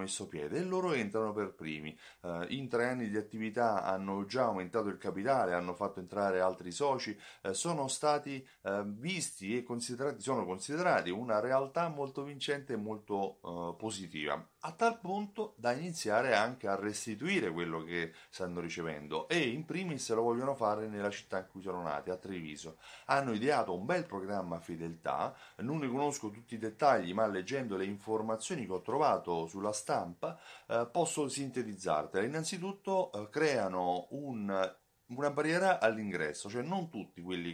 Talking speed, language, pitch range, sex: 155 wpm, Italian, 90-140 Hz, male